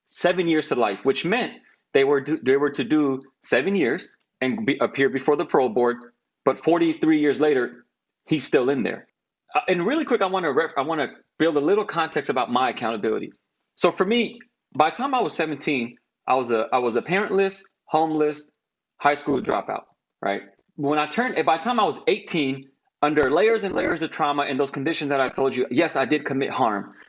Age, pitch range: 30-49, 135-175 Hz